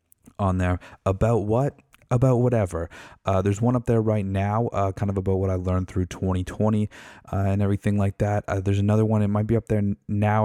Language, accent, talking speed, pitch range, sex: English, American, 210 wpm, 90-105 Hz, male